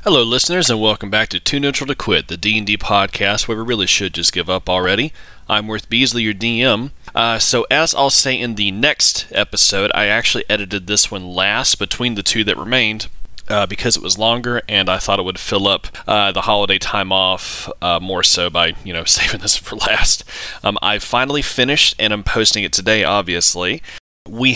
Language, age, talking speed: English, 30-49, 205 wpm